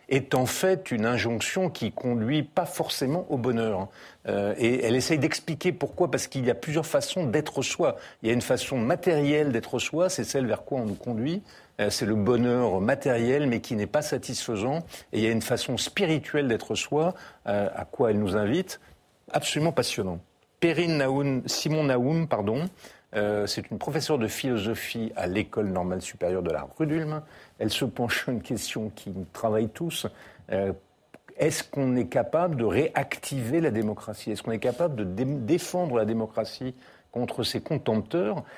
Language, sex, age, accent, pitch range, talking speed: French, male, 50-69, French, 110-145 Hz, 180 wpm